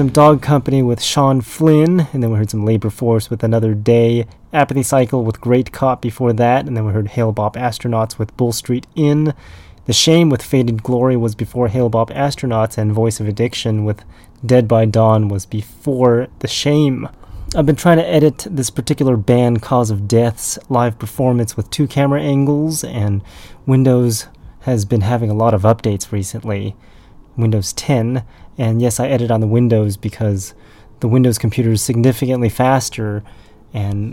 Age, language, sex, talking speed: 30-49, English, male, 170 wpm